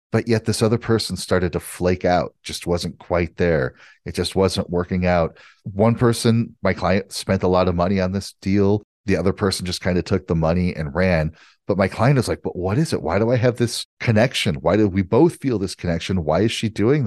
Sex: male